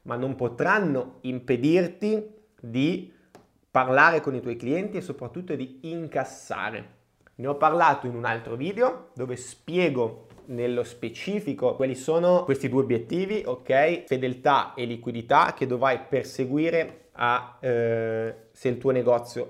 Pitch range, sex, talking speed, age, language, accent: 125-165 Hz, male, 130 wpm, 20-39, Italian, native